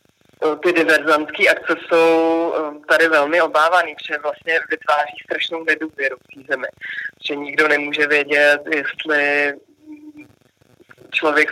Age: 20-39